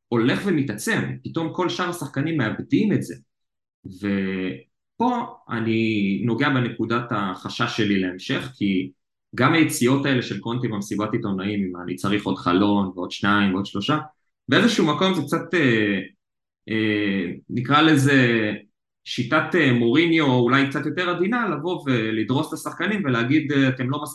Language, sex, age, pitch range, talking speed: Hebrew, male, 20-39, 100-145 Hz, 120 wpm